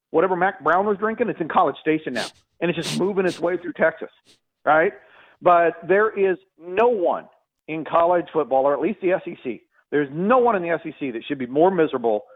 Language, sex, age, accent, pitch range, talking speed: English, male, 40-59, American, 140-185 Hz, 210 wpm